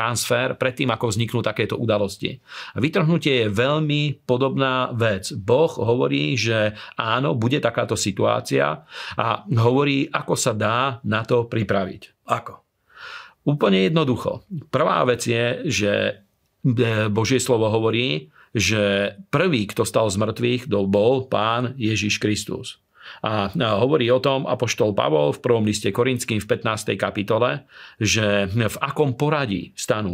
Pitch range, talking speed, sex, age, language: 105-130 Hz, 125 wpm, male, 40-59, Slovak